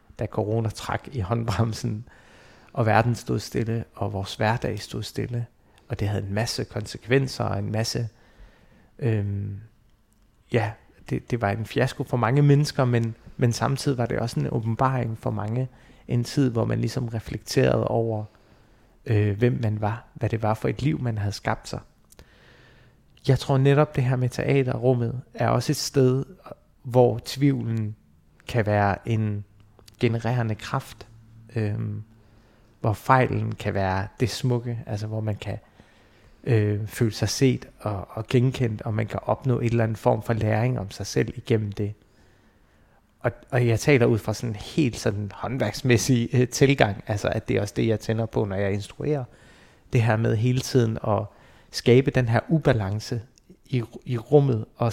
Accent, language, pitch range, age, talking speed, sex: native, Danish, 105-125 Hz, 30-49, 165 wpm, male